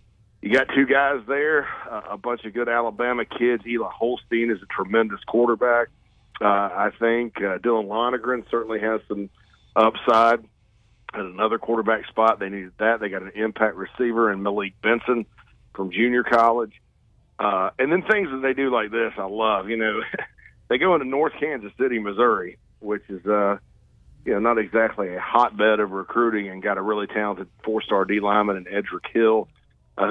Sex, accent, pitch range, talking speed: male, American, 105-120 Hz, 175 wpm